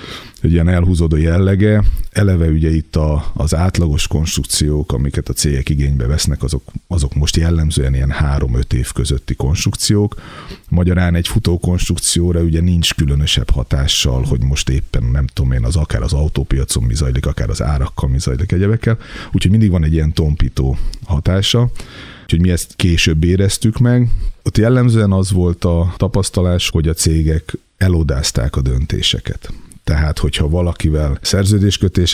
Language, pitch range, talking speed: Hungarian, 75-95 Hz, 150 wpm